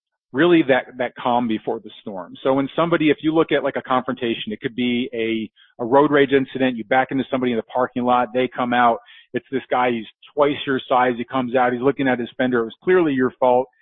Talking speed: 245 wpm